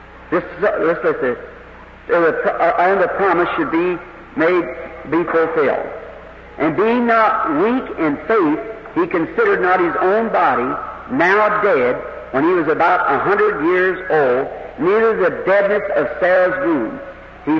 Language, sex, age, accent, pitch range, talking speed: English, male, 60-79, American, 170-205 Hz, 135 wpm